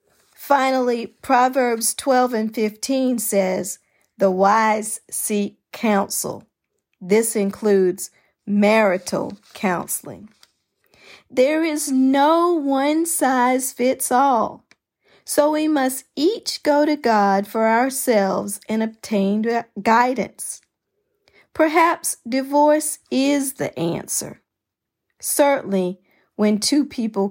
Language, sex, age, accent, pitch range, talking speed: English, female, 40-59, American, 195-270 Hz, 90 wpm